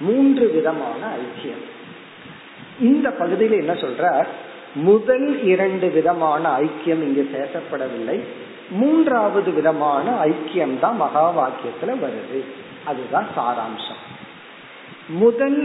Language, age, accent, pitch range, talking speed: Tamil, 50-69, native, 170-270 Hz, 75 wpm